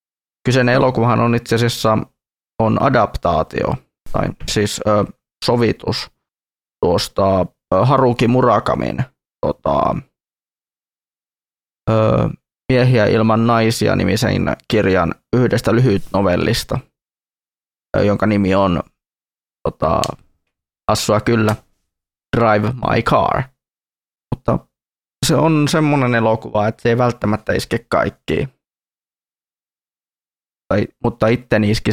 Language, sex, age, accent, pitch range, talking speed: Finnish, male, 20-39, native, 105-120 Hz, 90 wpm